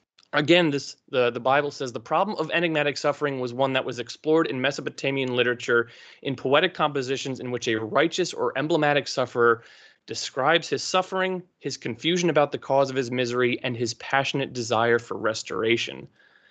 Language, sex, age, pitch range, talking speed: English, male, 20-39, 125-155 Hz, 165 wpm